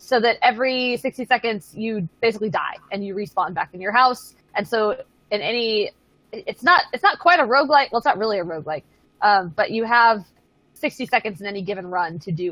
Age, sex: 20-39, female